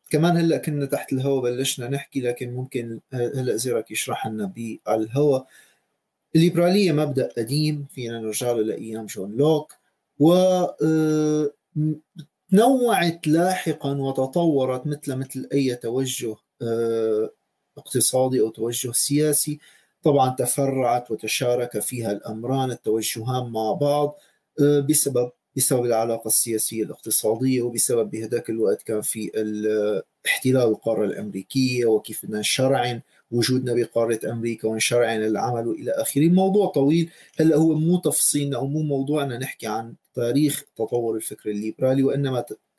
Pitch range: 115-155 Hz